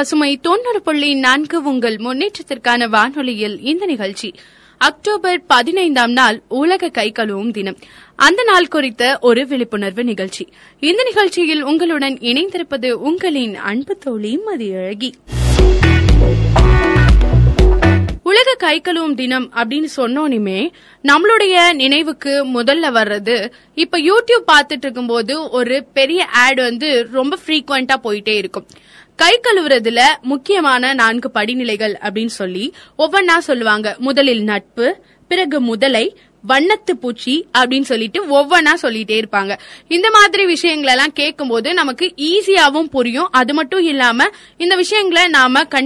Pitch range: 235-335 Hz